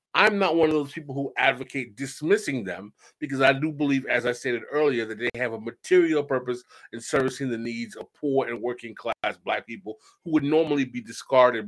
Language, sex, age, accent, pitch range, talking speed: English, male, 30-49, American, 125-165 Hz, 205 wpm